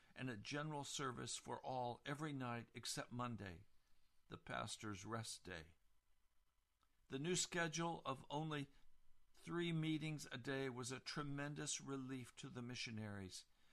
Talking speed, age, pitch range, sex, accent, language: 130 wpm, 60-79, 110-155 Hz, male, American, English